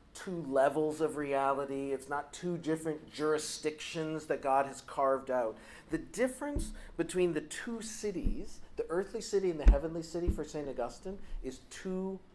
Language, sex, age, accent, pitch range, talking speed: English, male, 40-59, American, 140-185 Hz, 155 wpm